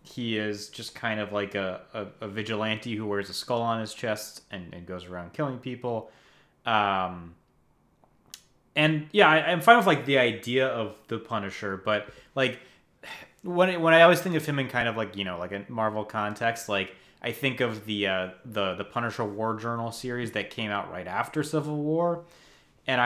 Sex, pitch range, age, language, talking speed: male, 100-130 Hz, 30-49, English, 200 wpm